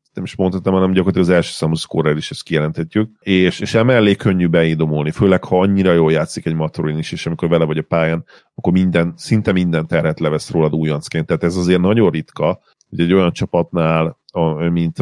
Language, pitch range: Hungarian, 80-90 Hz